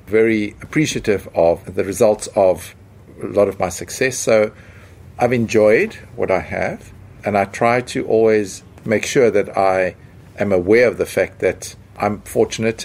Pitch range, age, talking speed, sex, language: 95-110 Hz, 50-69, 160 wpm, male, English